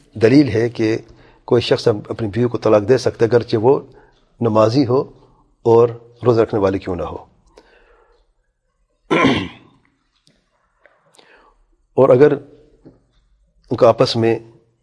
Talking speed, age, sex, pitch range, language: 115 wpm, 40-59, male, 115-140 Hz, English